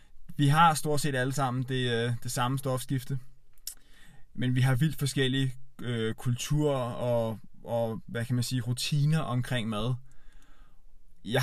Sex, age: male, 20-39